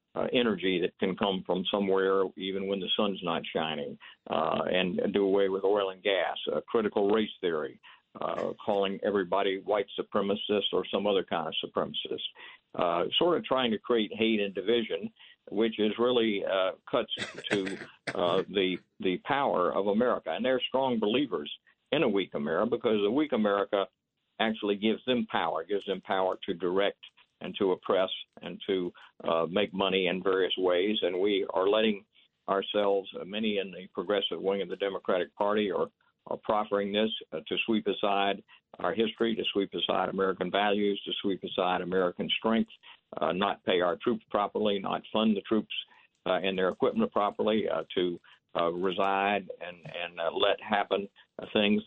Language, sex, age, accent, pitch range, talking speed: English, male, 60-79, American, 95-110 Hz, 170 wpm